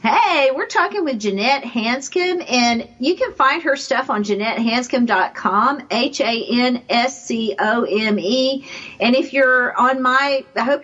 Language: English